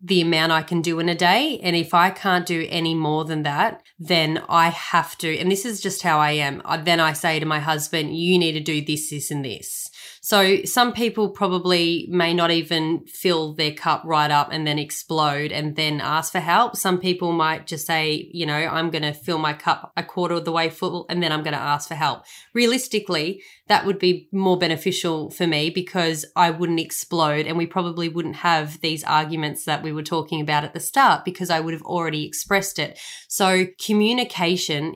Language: English